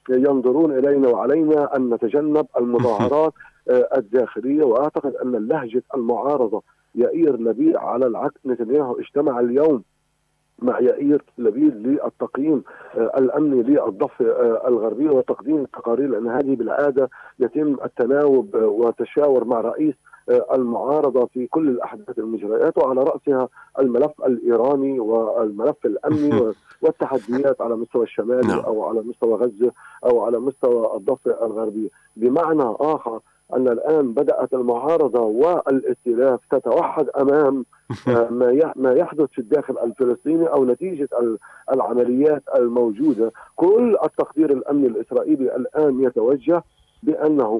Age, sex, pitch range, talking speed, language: 40-59, male, 125-170 Hz, 105 wpm, Arabic